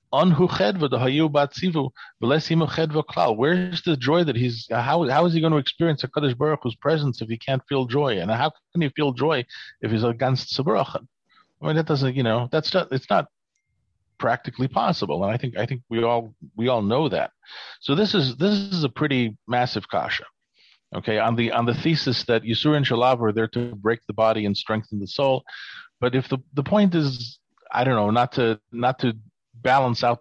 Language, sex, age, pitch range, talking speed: English, male, 40-59, 115-150 Hz, 195 wpm